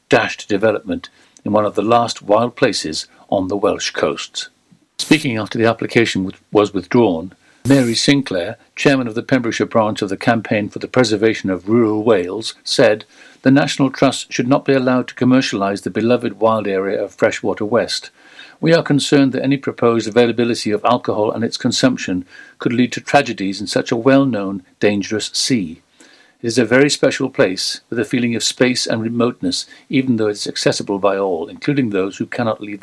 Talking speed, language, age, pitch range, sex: 180 wpm, English, 60-79, 105-135 Hz, male